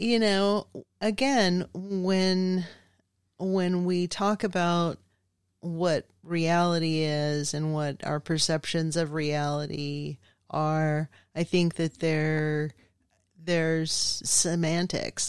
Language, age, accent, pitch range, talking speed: English, 30-49, American, 140-165 Hz, 95 wpm